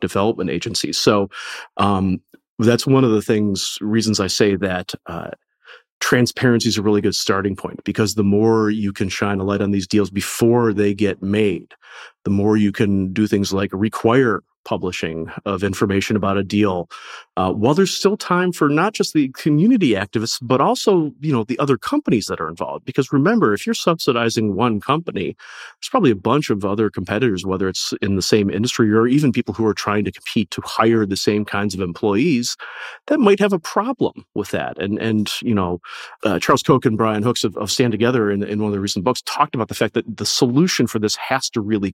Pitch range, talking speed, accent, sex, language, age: 100-115 Hz, 210 wpm, American, male, English, 30-49